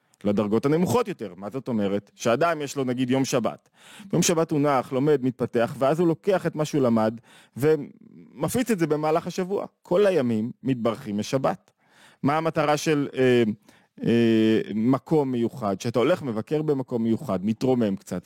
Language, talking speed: Hebrew, 160 wpm